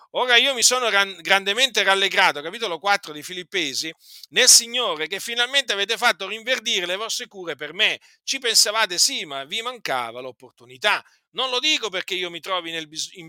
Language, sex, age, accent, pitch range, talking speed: Italian, male, 50-69, native, 155-235 Hz, 165 wpm